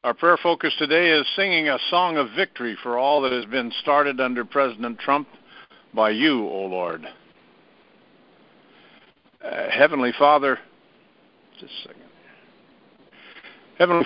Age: 60-79